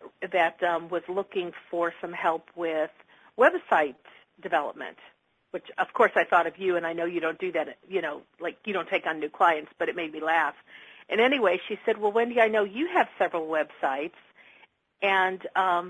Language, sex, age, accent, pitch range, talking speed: English, female, 50-69, American, 175-230 Hz, 195 wpm